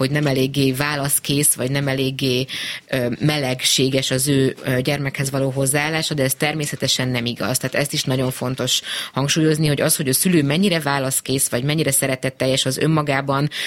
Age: 20-39